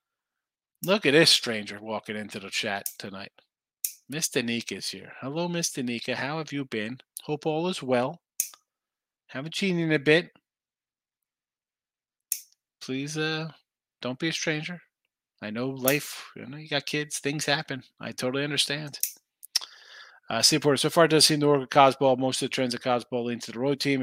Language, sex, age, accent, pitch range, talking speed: English, male, 30-49, American, 120-155 Hz, 175 wpm